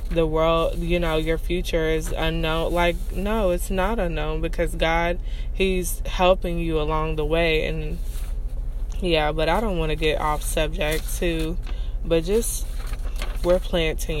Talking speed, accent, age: 150 wpm, American, 20-39